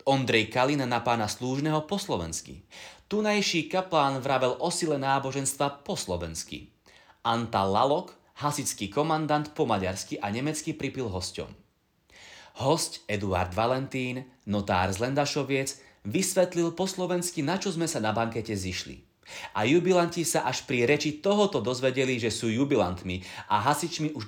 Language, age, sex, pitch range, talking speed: Slovak, 30-49, male, 100-155 Hz, 135 wpm